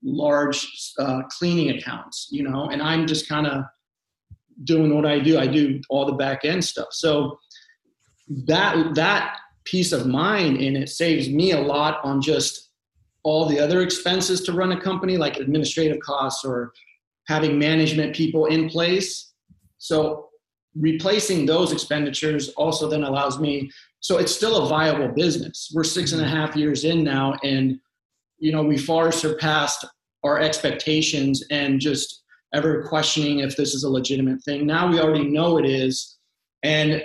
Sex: male